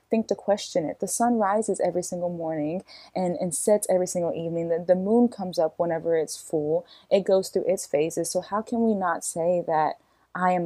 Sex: female